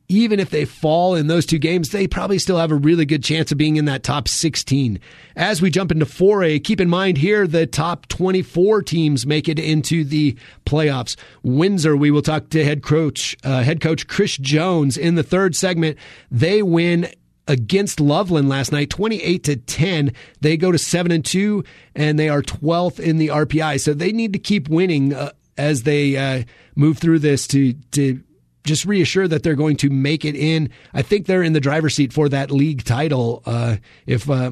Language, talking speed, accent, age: English, 200 wpm, American, 30-49